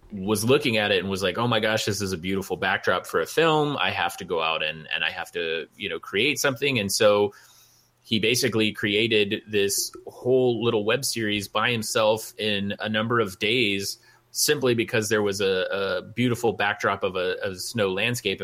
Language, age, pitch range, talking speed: English, 30-49, 95-140 Hz, 200 wpm